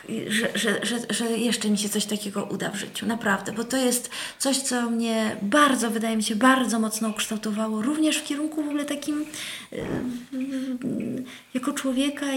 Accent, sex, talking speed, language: native, female, 155 wpm, Polish